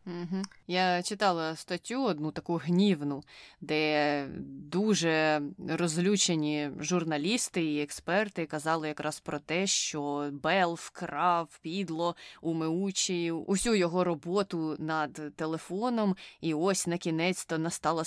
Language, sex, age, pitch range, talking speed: Ukrainian, female, 20-39, 160-195 Hz, 105 wpm